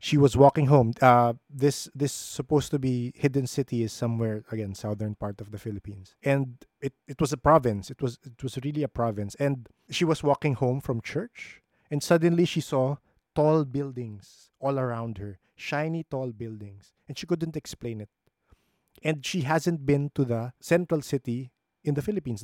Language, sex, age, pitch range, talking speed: English, male, 20-39, 120-150 Hz, 180 wpm